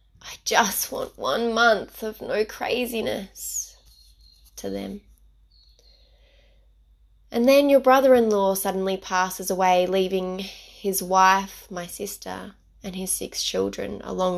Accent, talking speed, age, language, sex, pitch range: Australian, 115 wpm, 20-39, English, female, 180-230 Hz